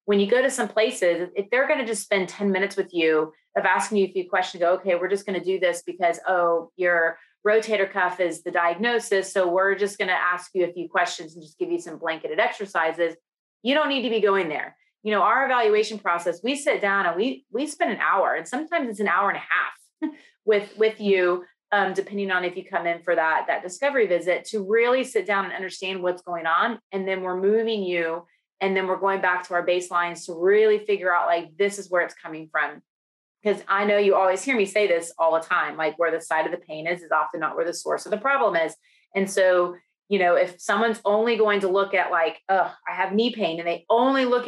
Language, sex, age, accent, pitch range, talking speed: English, female, 30-49, American, 175-210 Hz, 245 wpm